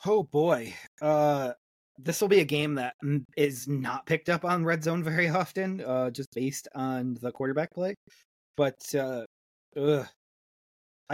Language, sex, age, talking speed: English, male, 20-39, 155 wpm